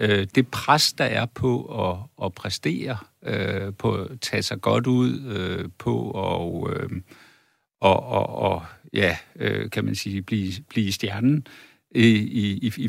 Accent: native